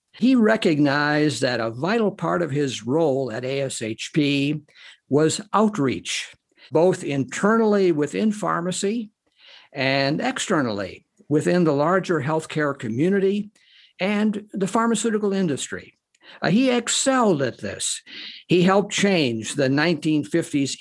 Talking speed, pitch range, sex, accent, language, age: 105 wpm, 135-180 Hz, male, American, English, 60-79